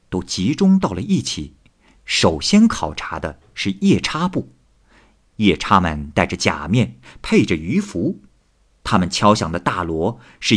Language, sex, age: Chinese, male, 50-69